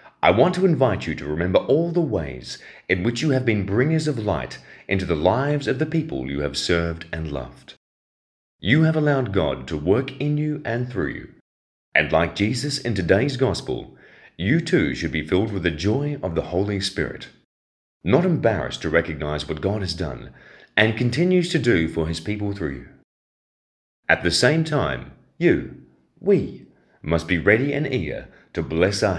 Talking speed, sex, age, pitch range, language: 185 wpm, male, 30-49, 75-130 Hz, English